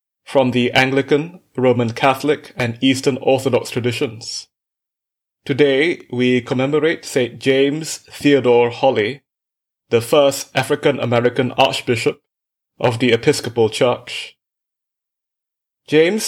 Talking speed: 90 wpm